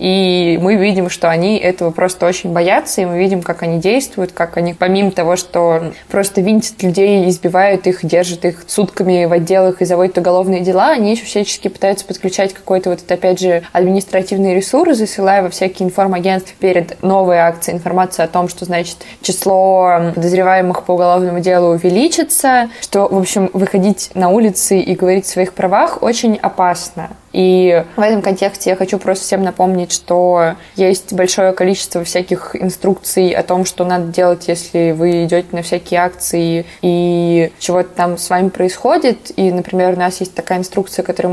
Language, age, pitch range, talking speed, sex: Russian, 20-39, 175-190 Hz, 165 wpm, female